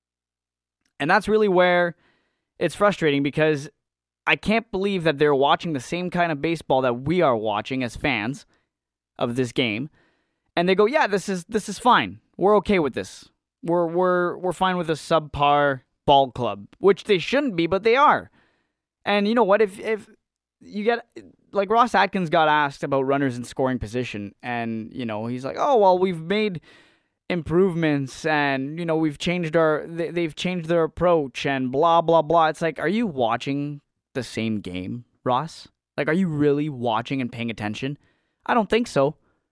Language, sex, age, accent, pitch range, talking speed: English, male, 20-39, American, 125-175 Hz, 180 wpm